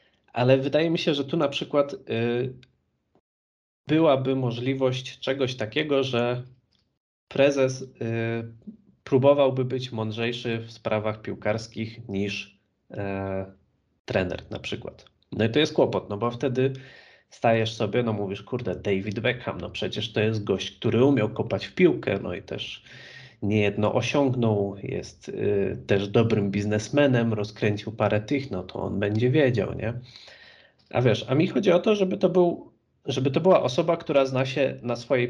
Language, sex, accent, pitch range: Polish, male, native, 105-135 Hz